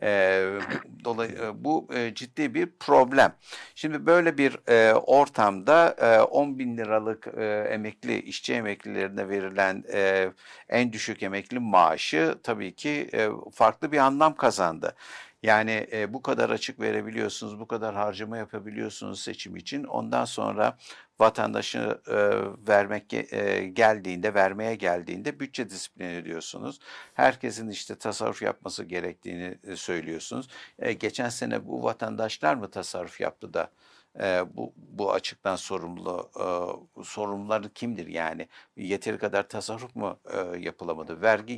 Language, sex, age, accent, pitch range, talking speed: Turkish, male, 60-79, native, 95-115 Hz, 125 wpm